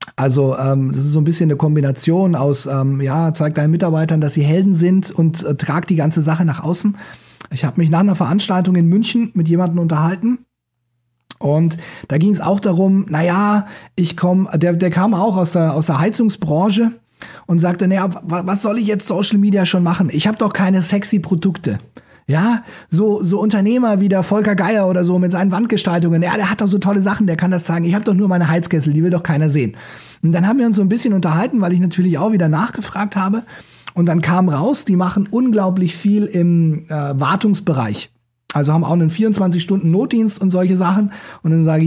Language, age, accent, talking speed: German, 30-49, German, 210 wpm